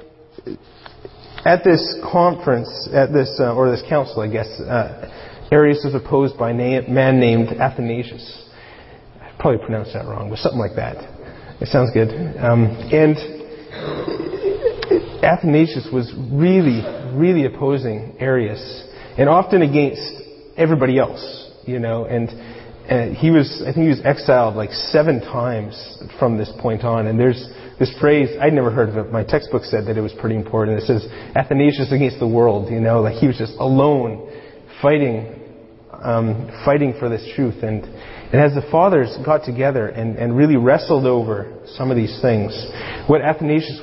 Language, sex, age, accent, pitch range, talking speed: English, male, 30-49, American, 115-150 Hz, 160 wpm